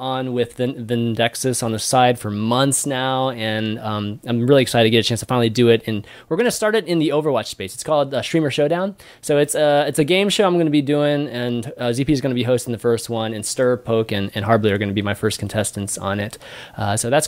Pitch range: 110-155 Hz